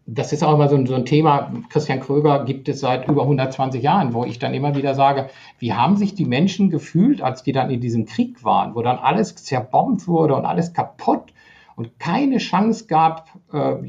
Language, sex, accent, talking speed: German, male, German, 210 wpm